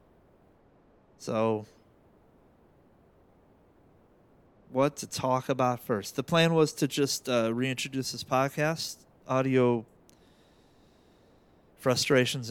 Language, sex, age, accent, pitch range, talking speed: English, male, 30-49, American, 100-130 Hz, 80 wpm